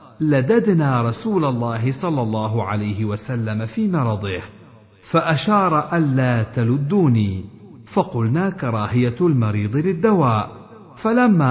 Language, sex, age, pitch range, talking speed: Arabic, male, 50-69, 110-165 Hz, 90 wpm